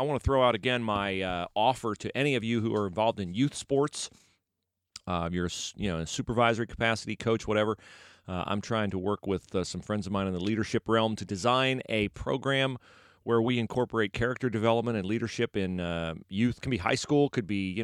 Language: English